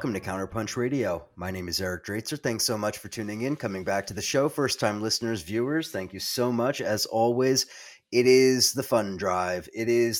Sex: male